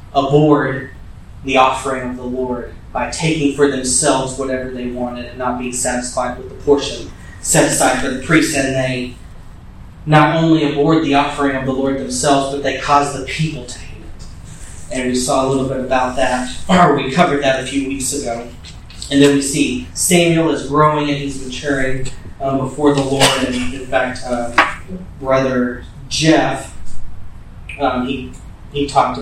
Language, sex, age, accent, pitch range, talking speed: English, male, 30-49, American, 120-140 Hz, 170 wpm